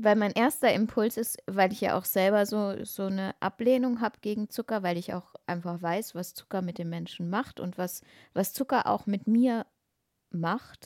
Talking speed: 200 wpm